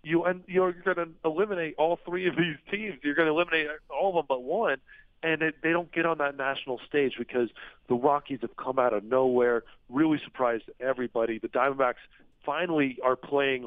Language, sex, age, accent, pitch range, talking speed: English, male, 40-59, American, 125-155 Hz, 200 wpm